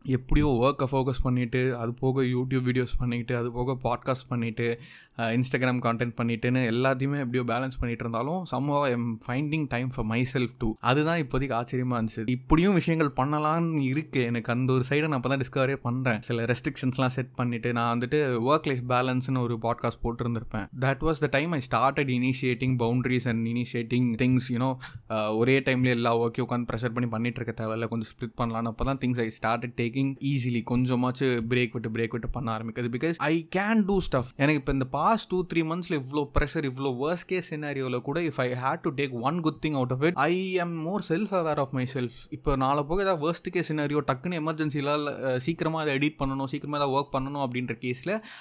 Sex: male